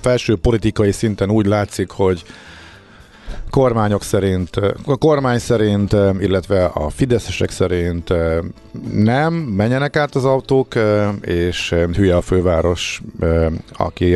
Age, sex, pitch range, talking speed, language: 50-69, male, 85-110 Hz, 105 wpm, Hungarian